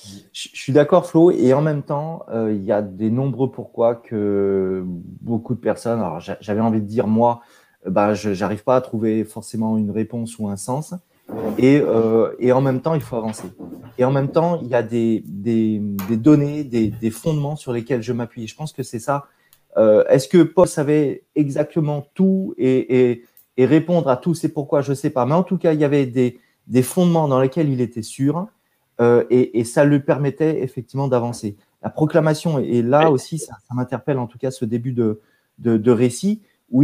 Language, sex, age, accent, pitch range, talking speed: French, male, 30-49, French, 120-155 Hz, 210 wpm